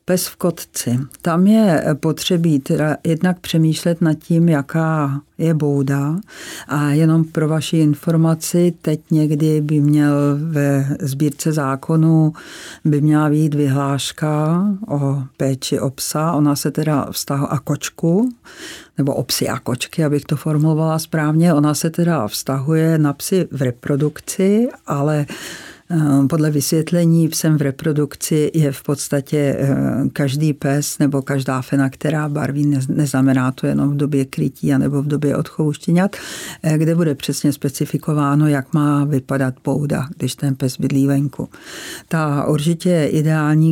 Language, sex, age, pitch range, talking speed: Czech, female, 50-69, 140-165 Hz, 135 wpm